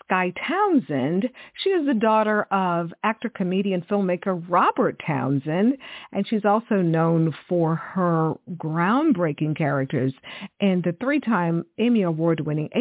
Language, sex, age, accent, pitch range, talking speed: English, female, 50-69, American, 165-225 Hz, 115 wpm